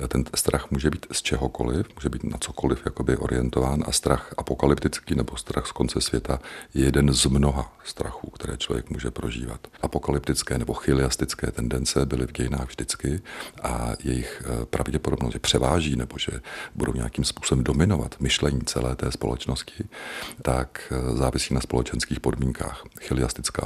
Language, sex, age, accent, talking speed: Czech, male, 40-59, native, 145 wpm